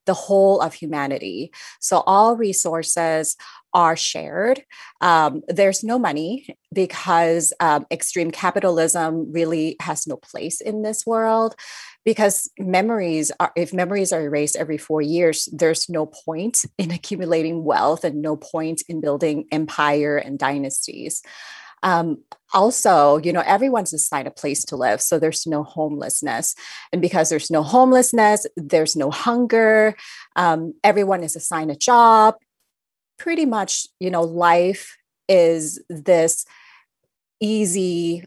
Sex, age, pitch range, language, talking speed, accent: female, 30-49, 160-210 Hz, English, 130 wpm, American